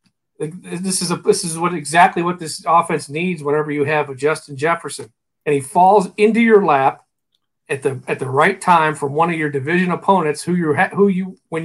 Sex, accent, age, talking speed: male, American, 50-69, 205 wpm